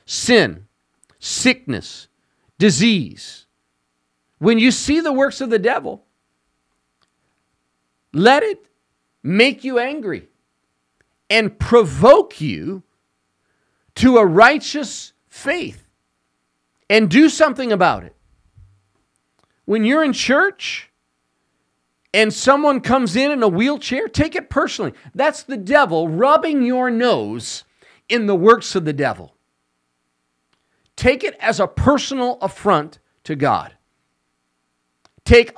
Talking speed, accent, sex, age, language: 105 wpm, American, male, 40-59, English